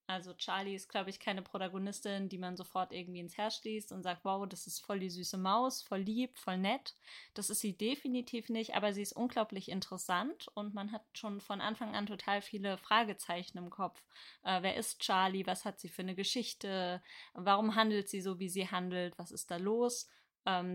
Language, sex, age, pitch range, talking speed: German, female, 20-39, 185-220 Hz, 205 wpm